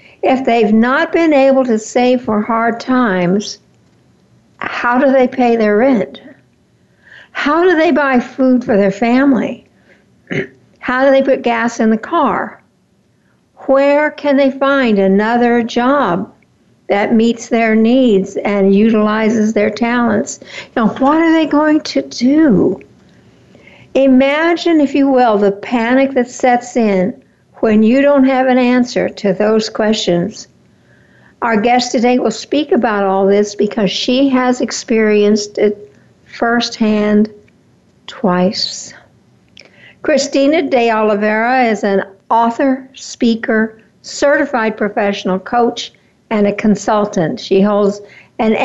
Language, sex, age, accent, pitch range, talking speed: English, female, 60-79, American, 210-265 Hz, 125 wpm